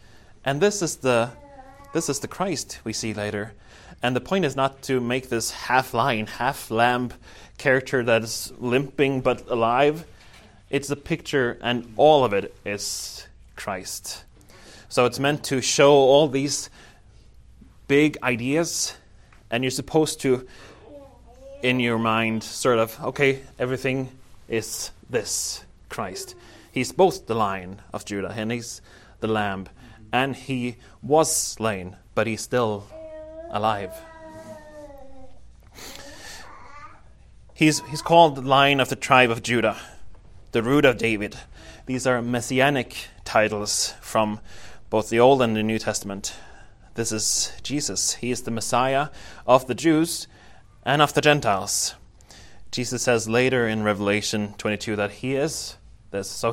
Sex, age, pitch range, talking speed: male, 20-39, 110-140 Hz, 135 wpm